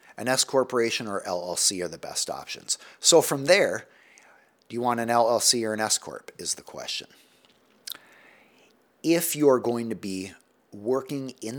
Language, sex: English, male